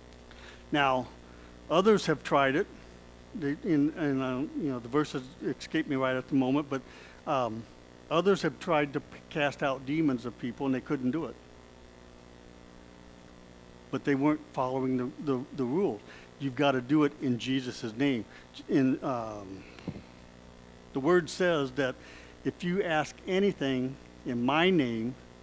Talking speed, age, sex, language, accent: 145 wpm, 60-79, male, English, American